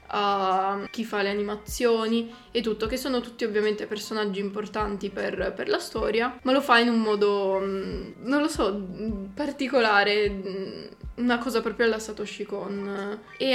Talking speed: 150 wpm